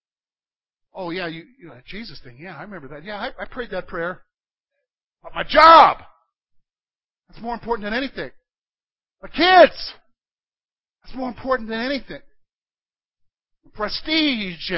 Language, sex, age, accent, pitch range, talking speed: English, male, 50-69, American, 155-225 Hz, 140 wpm